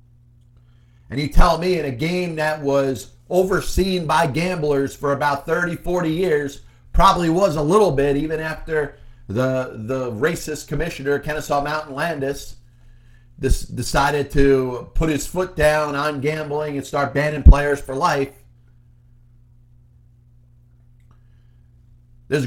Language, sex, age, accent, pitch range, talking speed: English, male, 40-59, American, 120-160 Hz, 125 wpm